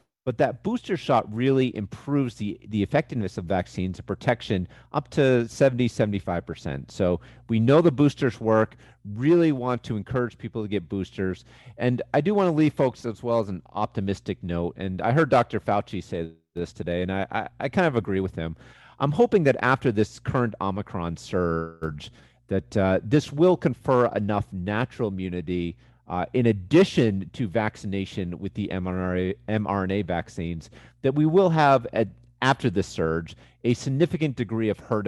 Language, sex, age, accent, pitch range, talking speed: English, male, 40-59, American, 95-135 Hz, 170 wpm